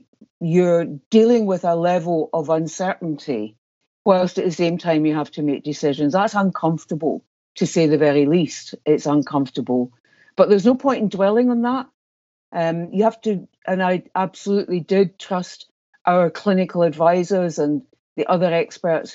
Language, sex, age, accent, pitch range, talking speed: English, female, 60-79, British, 160-195 Hz, 155 wpm